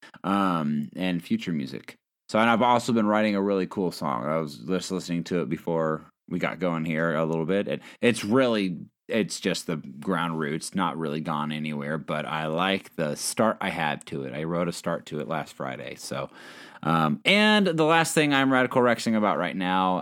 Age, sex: 30-49, male